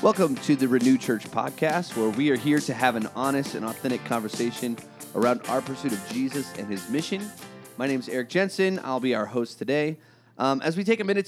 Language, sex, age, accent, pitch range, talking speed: English, male, 30-49, American, 115-150 Hz, 220 wpm